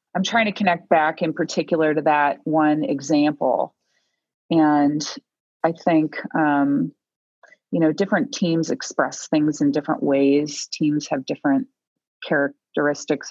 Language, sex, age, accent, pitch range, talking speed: English, female, 30-49, American, 150-190 Hz, 125 wpm